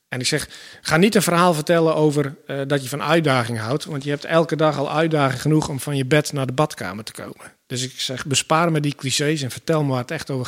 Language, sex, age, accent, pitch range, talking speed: Dutch, male, 50-69, Dutch, 130-155 Hz, 265 wpm